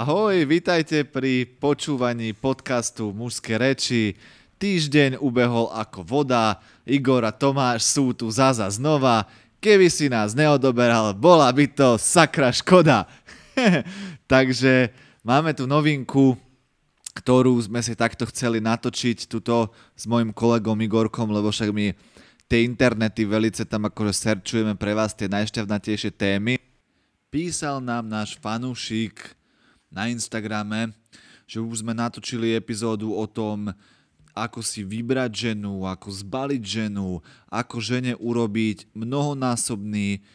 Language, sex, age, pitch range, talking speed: Slovak, male, 20-39, 105-130 Hz, 120 wpm